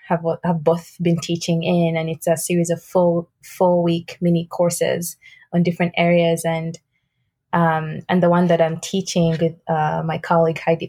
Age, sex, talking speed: 20-39, female, 170 wpm